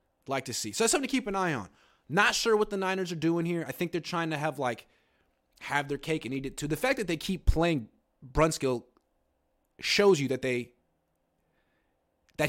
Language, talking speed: English, 215 wpm